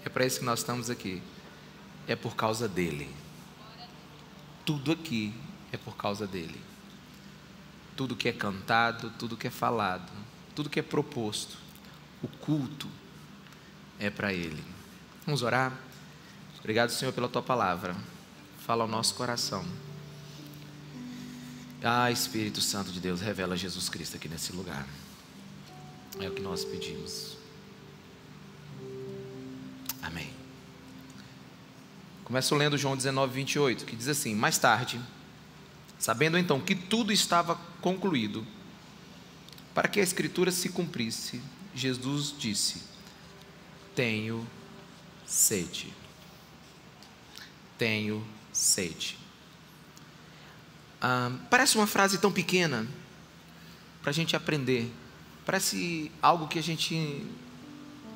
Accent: Brazilian